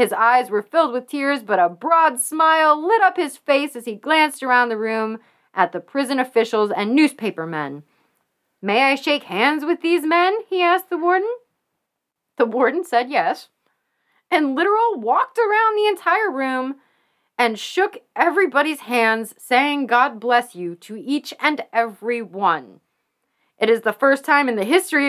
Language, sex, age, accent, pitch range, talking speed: English, female, 30-49, American, 225-300 Hz, 165 wpm